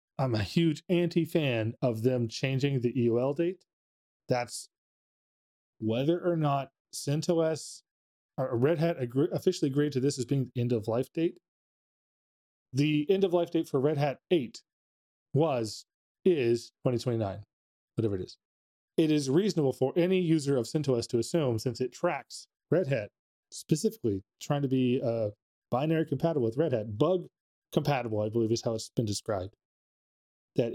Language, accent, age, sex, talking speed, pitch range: English, American, 30-49, male, 155 wpm, 115-160 Hz